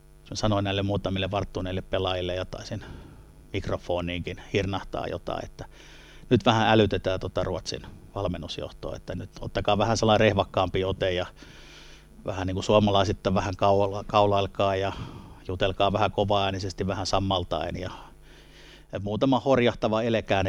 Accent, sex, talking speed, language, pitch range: native, male, 130 wpm, Finnish, 95-110 Hz